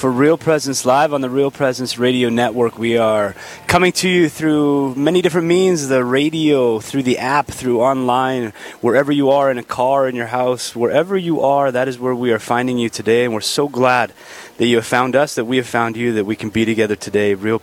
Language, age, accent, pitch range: English, 30-49, American, 115-135 Hz